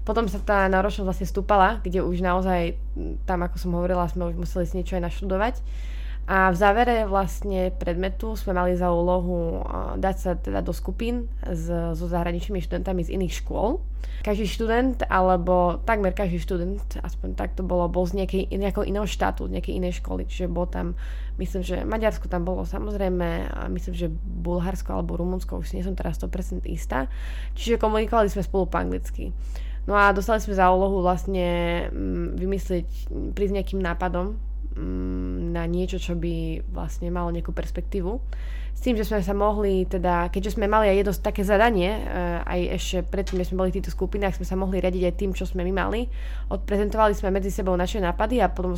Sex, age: female, 20-39